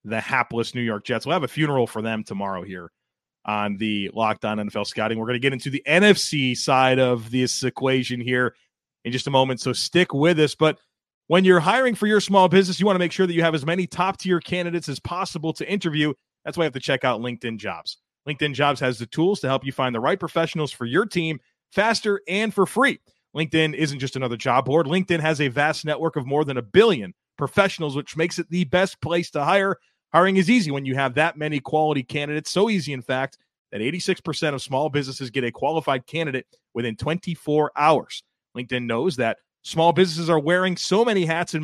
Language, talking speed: English, 220 wpm